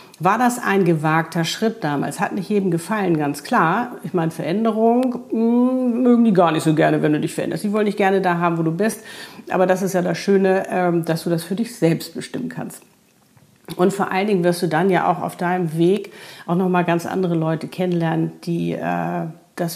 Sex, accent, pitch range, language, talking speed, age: female, German, 170-205 Hz, German, 210 wpm, 50-69